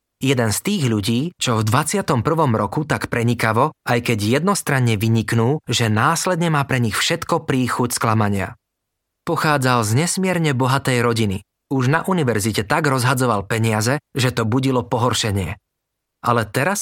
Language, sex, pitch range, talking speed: Slovak, male, 110-140 Hz, 140 wpm